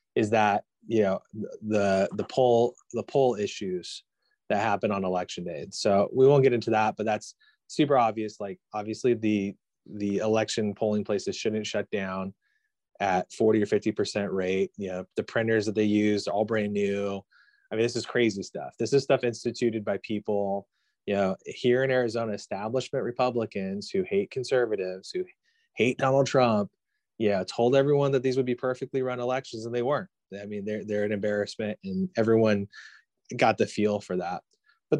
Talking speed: 180 wpm